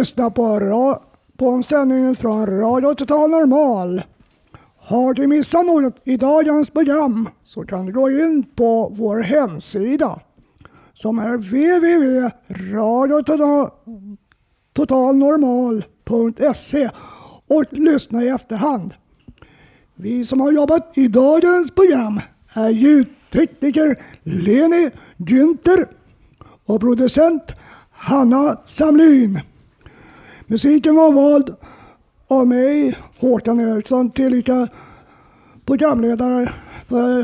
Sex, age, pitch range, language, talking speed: male, 60-79, 230-295 Hz, Swedish, 90 wpm